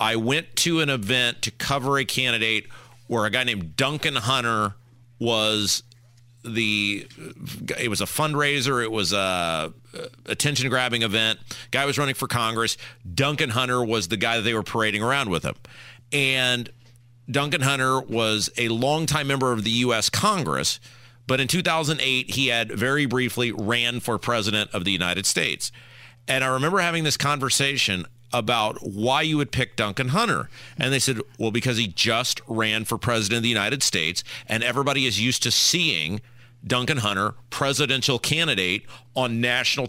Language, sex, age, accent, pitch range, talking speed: English, male, 40-59, American, 115-140 Hz, 160 wpm